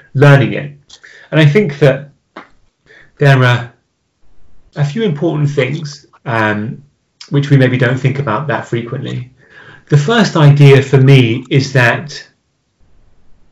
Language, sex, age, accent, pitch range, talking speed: English, male, 30-49, British, 125-150 Hz, 125 wpm